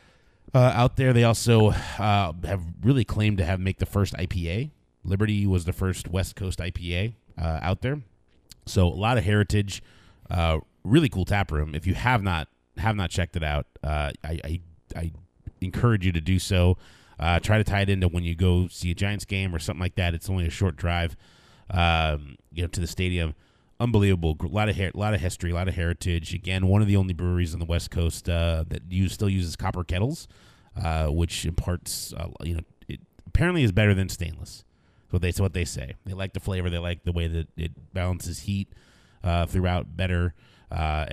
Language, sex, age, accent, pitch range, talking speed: English, male, 30-49, American, 85-100 Hz, 200 wpm